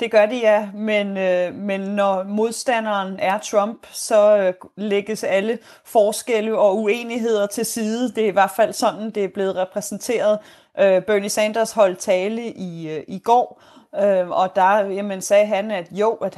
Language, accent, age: Danish, native, 30-49